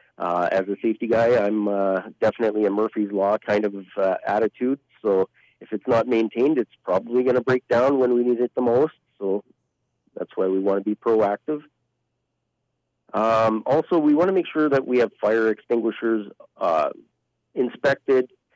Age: 40-59